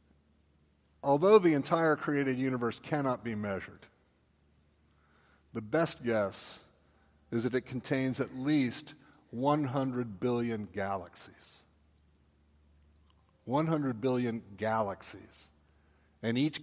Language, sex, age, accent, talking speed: English, male, 50-69, American, 90 wpm